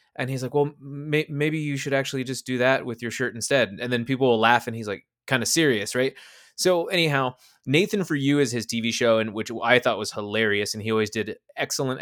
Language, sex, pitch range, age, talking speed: English, male, 110-145 Hz, 20-39, 240 wpm